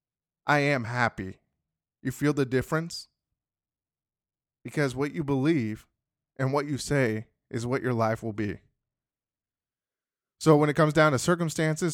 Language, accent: English, American